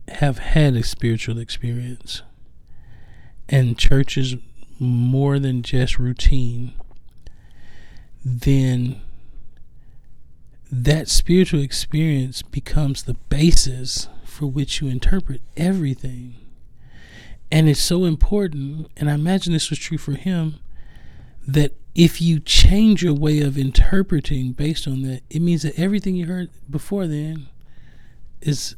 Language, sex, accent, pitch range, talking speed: English, male, American, 120-150 Hz, 115 wpm